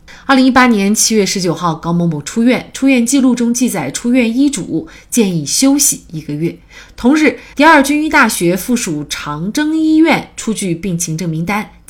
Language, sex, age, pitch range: Chinese, female, 30-49, 170-250 Hz